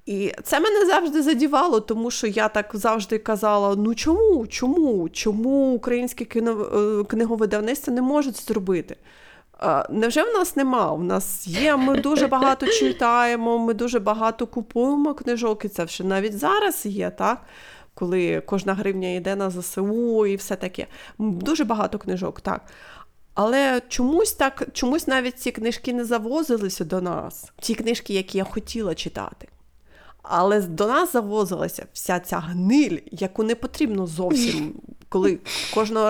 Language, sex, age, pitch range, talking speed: Ukrainian, female, 30-49, 195-240 Hz, 150 wpm